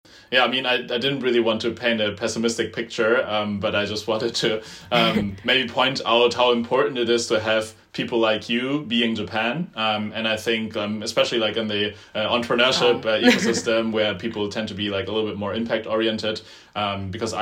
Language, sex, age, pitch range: English, male, 20-39, 95-115 Hz